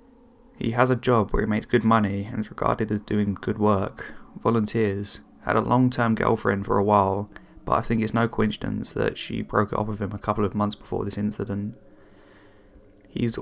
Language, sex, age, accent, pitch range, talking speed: English, male, 10-29, British, 100-115 Hz, 200 wpm